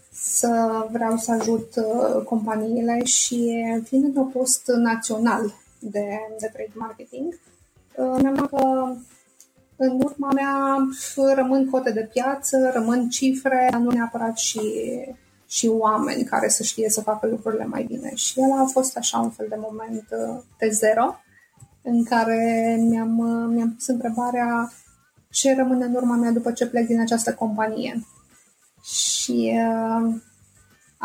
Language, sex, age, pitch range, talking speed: Romanian, female, 20-39, 220-260 Hz, 135 wpm